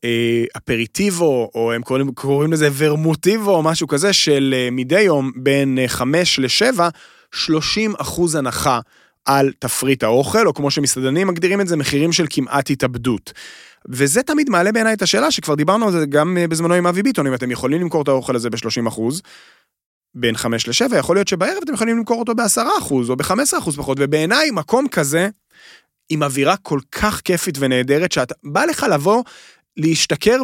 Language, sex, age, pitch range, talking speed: Hebrew, male, 30-49, 135-195 Hz, 130 wpm